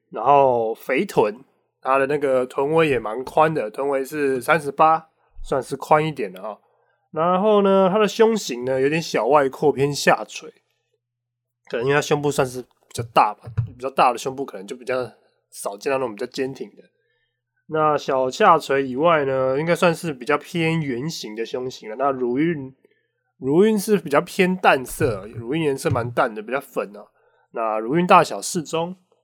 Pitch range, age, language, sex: 130-180 Hz, 20-39, English, male